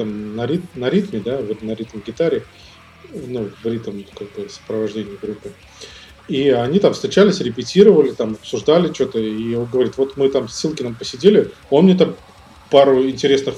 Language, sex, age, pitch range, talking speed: Russian, male, 20-39, 110-145 Hz, 165 wpm